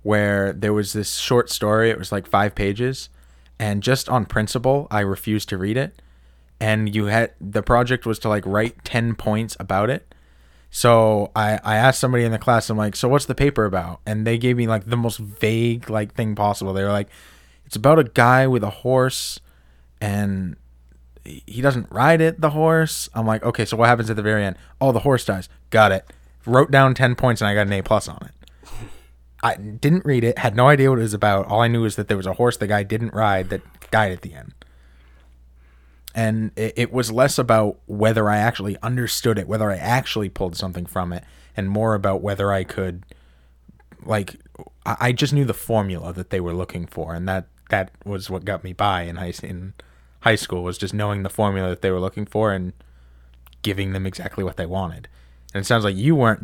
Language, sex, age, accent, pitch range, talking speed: English, male, 20-39, American, 90-115 Hz, 220 wpm